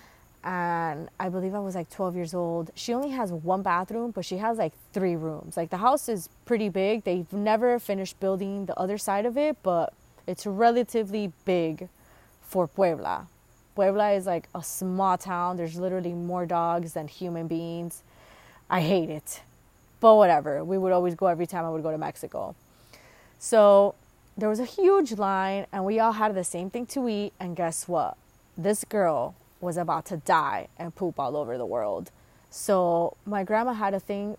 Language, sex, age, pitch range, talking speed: English, female, 20-39, 170-215 Hz, 185 wpm